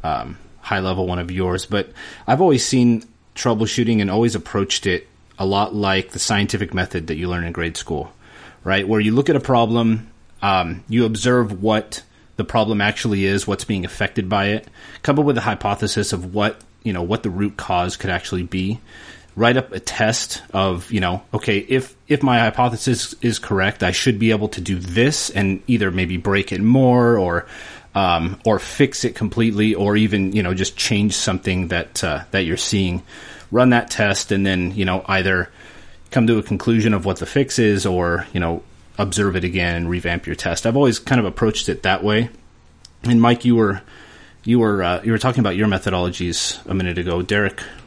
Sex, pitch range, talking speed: male, 90-115 Hz, 200 wpm